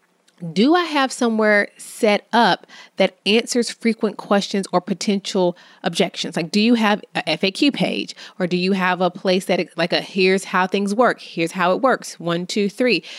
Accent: American